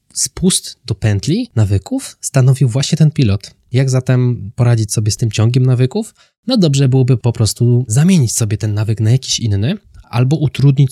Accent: native